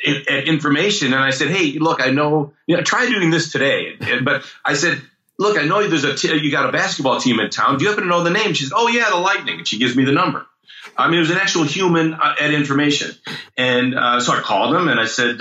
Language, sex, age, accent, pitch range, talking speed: English, male, 40-59, American, 130-185 Hz, 270 wpm